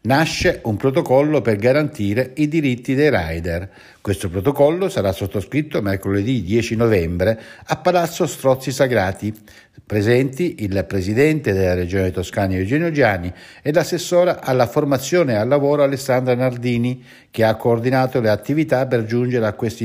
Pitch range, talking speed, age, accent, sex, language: 100-135 Hz, 140 wpm, 60-79, native, male, Italian